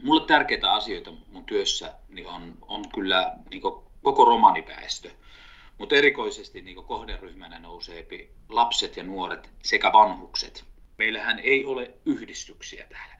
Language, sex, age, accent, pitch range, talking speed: Finnish, male, 30-49, native, 305-440 Hz, 125 wpm